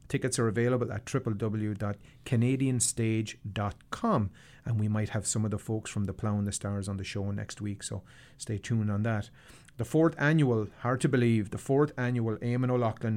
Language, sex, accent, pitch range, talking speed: English, male, Irish, 105-135 Hz, 180 wpm